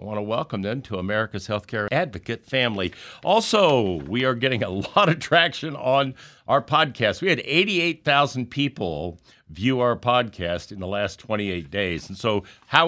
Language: English